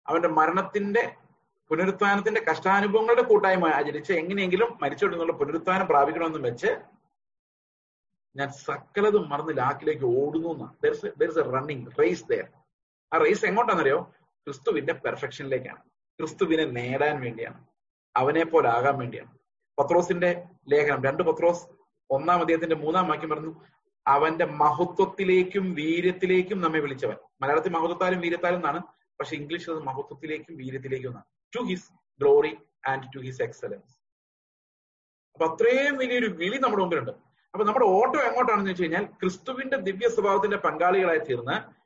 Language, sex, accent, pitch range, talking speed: Malayalam, male, native, 155-260 Hz, 110 wpm